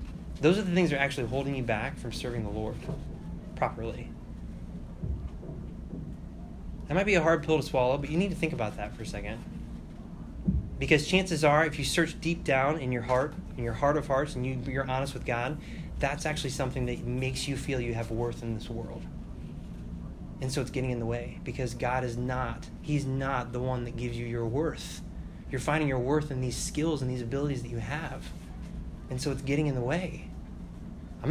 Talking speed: 205 wpm